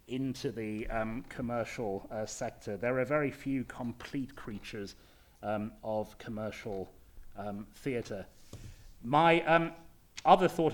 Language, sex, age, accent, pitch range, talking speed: English, male, 30-49, British, 115-140 Hz, 115 wpm